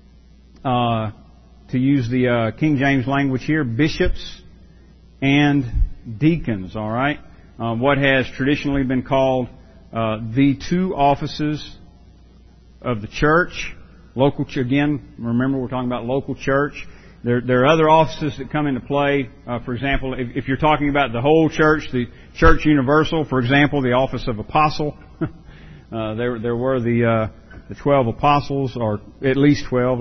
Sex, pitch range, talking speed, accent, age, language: male, 110-140 Hz, 155 wpm, American, 50-69, English